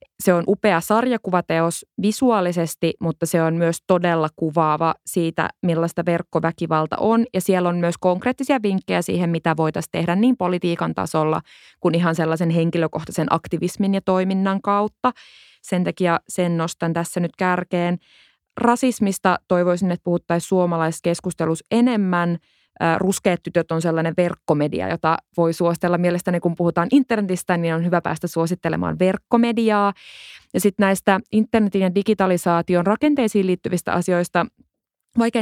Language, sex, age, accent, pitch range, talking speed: Finnish, female, 20-39, native, 165-195 Hz, 130 wpm